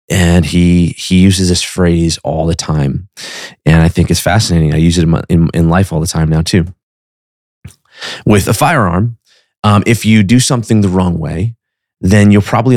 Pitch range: 85-110 Hz